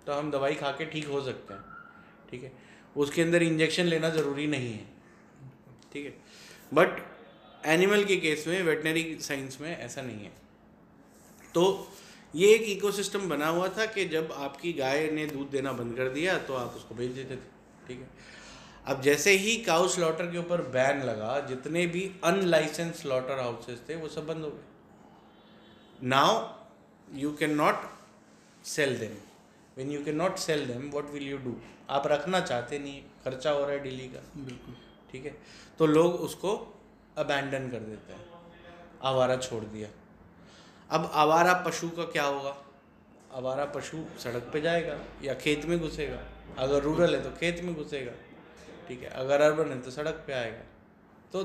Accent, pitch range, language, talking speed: native, 135-170 Hz, Hindi, 170 wpm